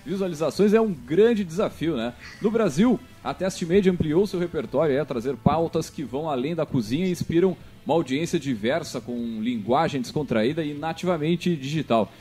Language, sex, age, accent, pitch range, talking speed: Portuguese, male, 40-59, Brazilian, 155-200 Hz, 160 wpm